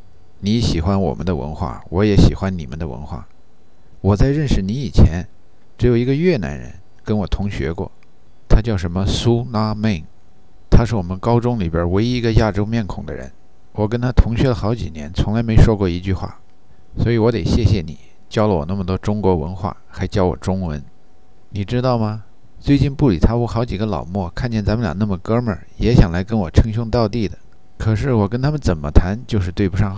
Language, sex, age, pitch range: Chinese, male, 50-69, 90-115 Hz